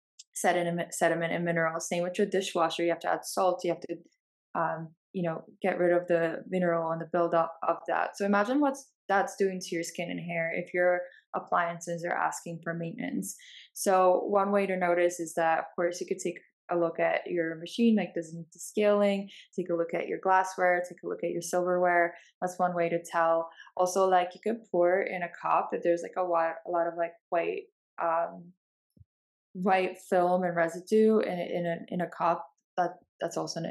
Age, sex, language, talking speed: 20-39, female, English, 215 wpm